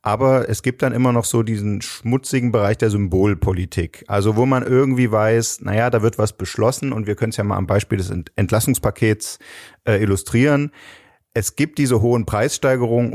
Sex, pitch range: male, 95-110 Hz